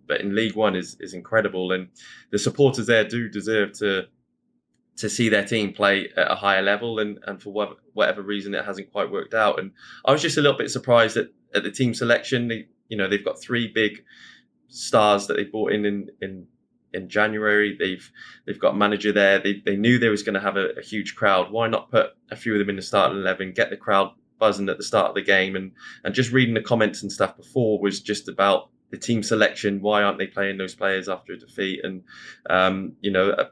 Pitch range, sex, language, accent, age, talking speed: 100-115 Hz, male, English, British, 20-39, 230 wpm